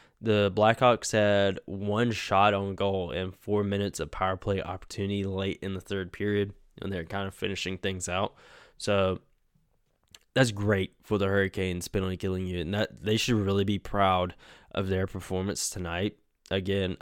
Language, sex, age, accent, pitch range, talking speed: English, male, 10-29, American, 95-115 Hz, 165 wpm